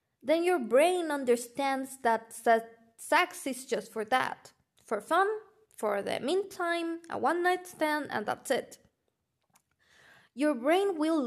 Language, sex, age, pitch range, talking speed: English, female, 20-39, 235-325 Hz, 130 wpm